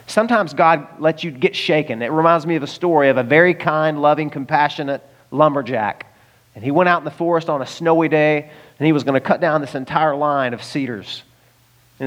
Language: English